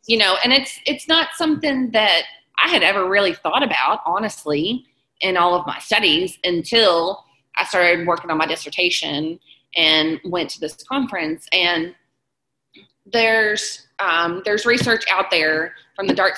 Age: 20-39